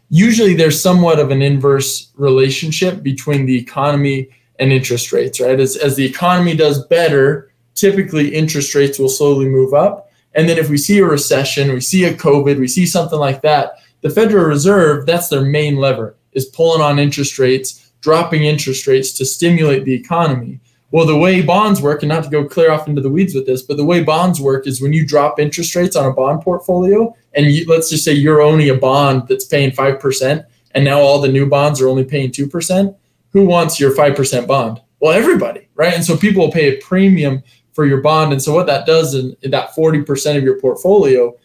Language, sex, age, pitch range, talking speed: English, male, 20-39, 135-165 Hz, 210 wpm